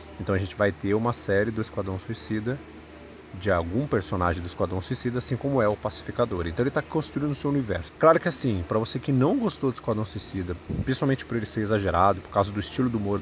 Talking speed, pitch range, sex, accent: 225 wpm, 95-125 Hz, male, Brazilian